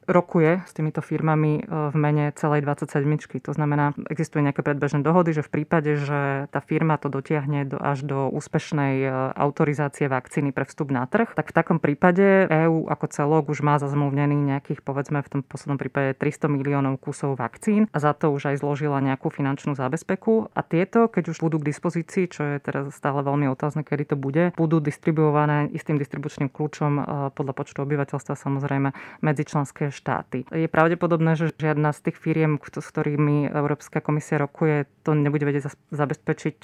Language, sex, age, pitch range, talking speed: Slovak, female, 30-49, 140-155 Hz, 170 wpm